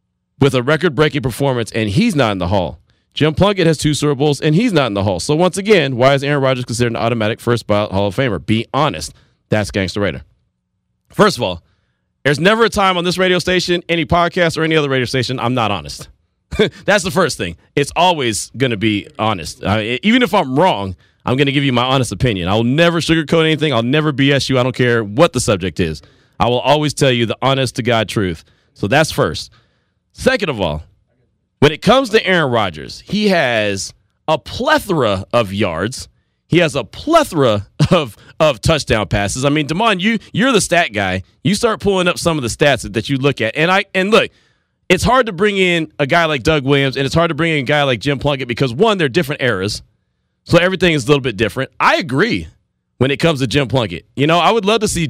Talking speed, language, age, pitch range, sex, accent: 225 wpm, English, 30-49, 115-165 Hz, male, American